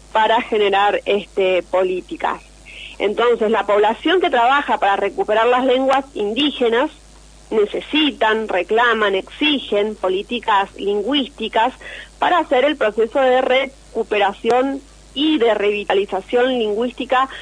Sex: female